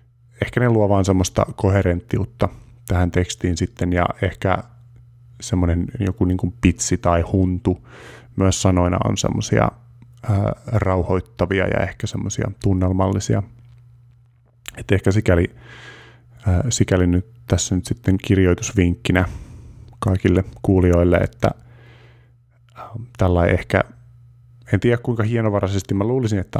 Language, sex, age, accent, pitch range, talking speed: Finnish, male, 20-39, native, 95-120 Hz, 110 wpm